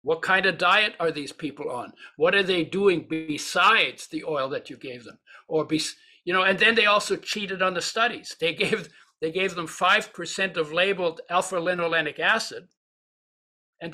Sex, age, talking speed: male, 60-79, 180 wpm